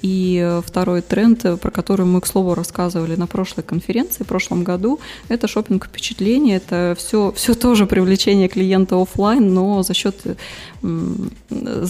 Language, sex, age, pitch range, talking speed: Russian, female, 20-39, 175-210 Hz, 135 wpm